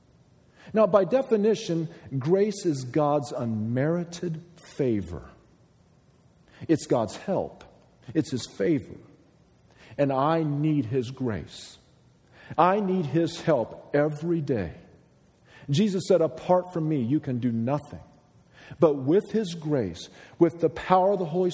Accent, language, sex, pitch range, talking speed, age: American, English, male, 120-185 Hz, 125 wpm, 40-59